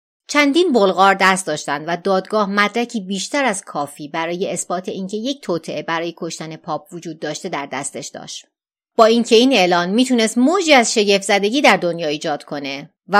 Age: 30-49